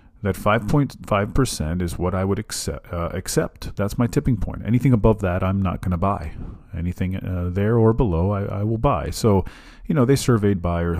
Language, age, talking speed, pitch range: English, 40-59, 190 wpm, 85-110 Hz